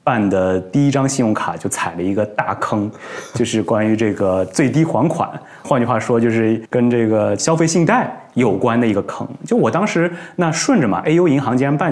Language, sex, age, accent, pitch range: Chinese, male, 20-39, native, 110-165 Hz